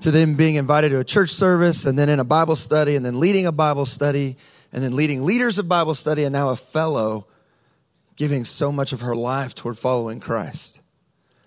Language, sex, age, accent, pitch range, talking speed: English, male, 30-49, American, 130-155 Hz, 210 wpm